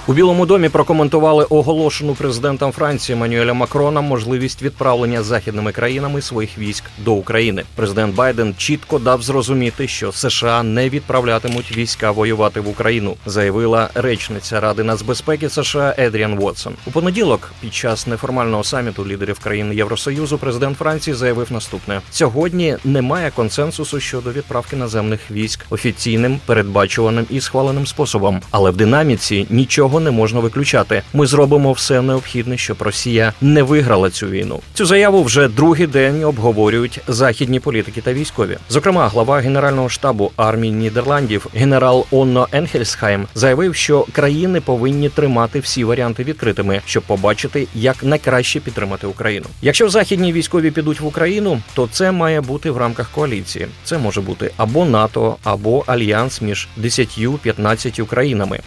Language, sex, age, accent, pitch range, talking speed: Ukrainian, male, 30-49, native, 110-145 Hz, 140 wpm